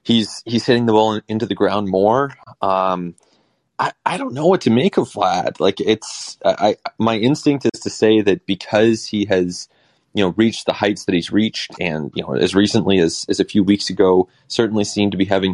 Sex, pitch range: male, 90-110 Hz